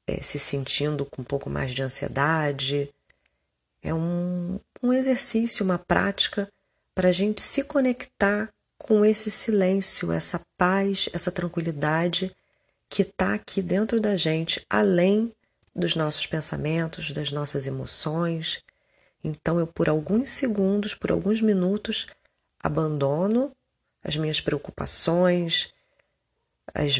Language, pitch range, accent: Portuguese, 145-195 Hz, Brazilian